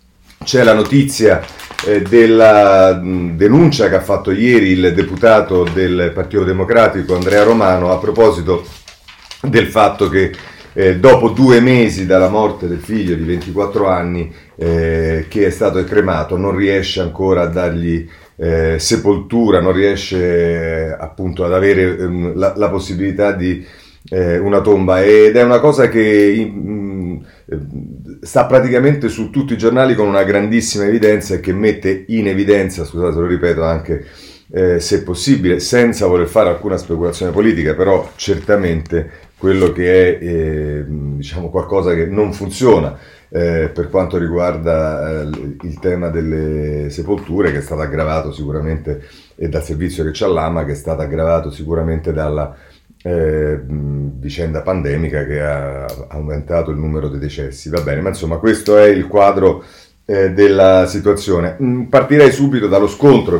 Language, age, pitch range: Italian, 30-49, 80-100 Hz